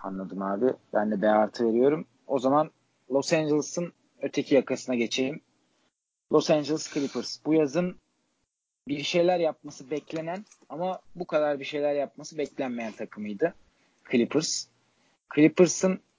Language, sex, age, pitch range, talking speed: Turkish, male, 40-59, 125-165 Hz, 125 wpm